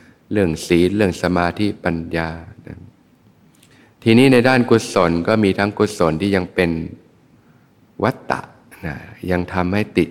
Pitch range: 85-105 Hz